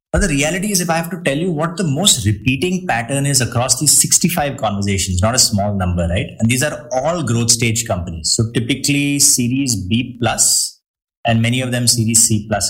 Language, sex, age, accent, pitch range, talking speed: English, male, 30-49, Indian, 115-160 Hz, 210 wpm